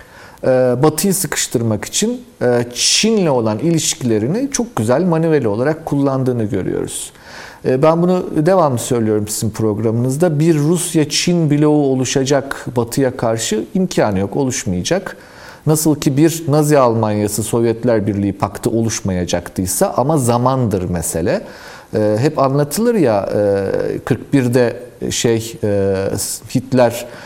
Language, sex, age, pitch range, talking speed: Turkish, male, 40-59, 105-145 Hz, 100 wpm